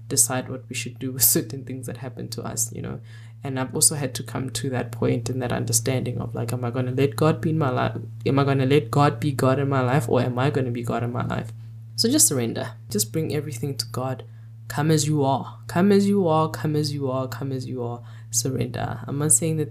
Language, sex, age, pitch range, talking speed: English, female, 10-29, 115-140 Hz, 260 wpm